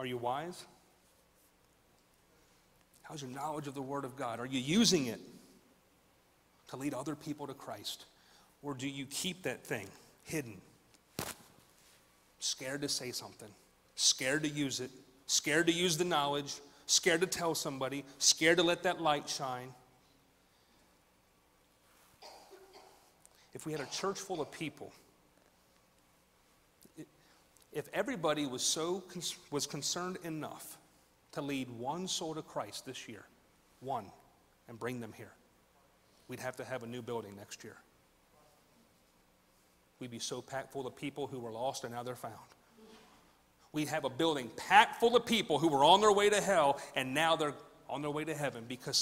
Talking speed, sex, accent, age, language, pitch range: 155 wpm, male, American, 40-59, English, 125-155 Hz